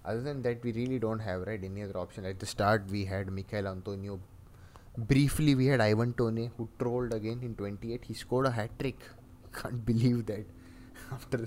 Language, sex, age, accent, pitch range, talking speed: English, male, 20-39, Indian, 100-115 Hz, 195 wpm